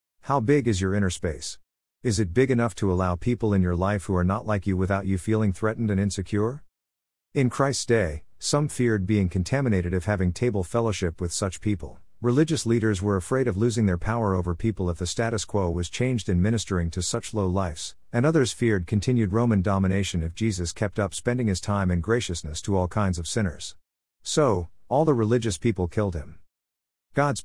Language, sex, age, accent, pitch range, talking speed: English, male, 50-69, American, 90-120 Hz, 200 wpm